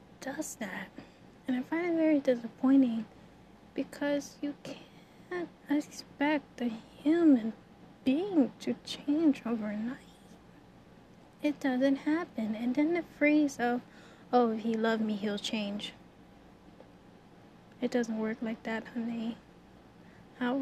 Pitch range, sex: 230-265 Hz, female